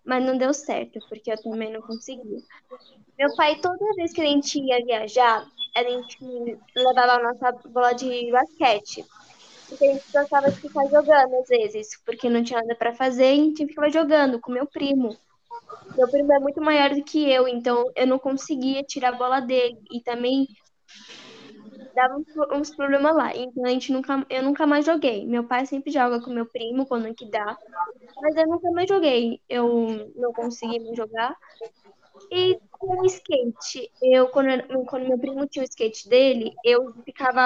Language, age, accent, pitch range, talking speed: Portuguese, 10-29, Brazilian, 240-290 Hz, 185 wpm